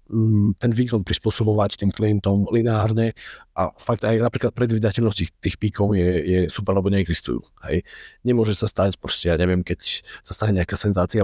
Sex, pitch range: male, 90-115 Hz